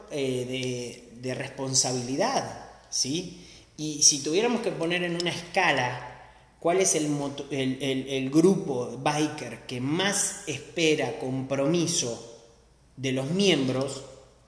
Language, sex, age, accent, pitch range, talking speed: Spanish, male, 30-49, Argentinian, 135-180 Hz, 120 wpm